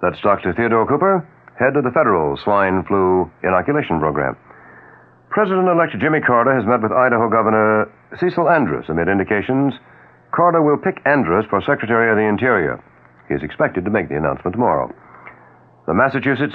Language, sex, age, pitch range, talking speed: English, male, 60-79, 80-130 Hz, 155 wpm